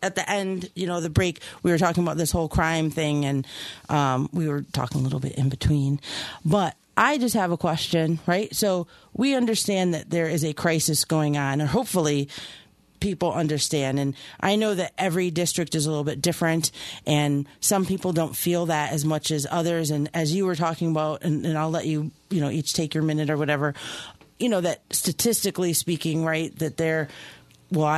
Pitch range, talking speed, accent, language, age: 150-195 Hz, 205 wpm, American, English, 40-59